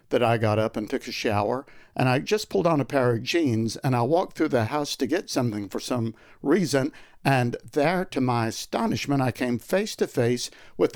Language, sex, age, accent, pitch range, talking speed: English, male, 60-79, American, 120-160 Hz, 220 wpm